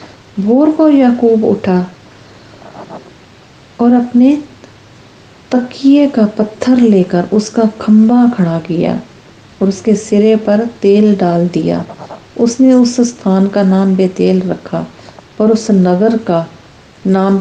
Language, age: English, 50-69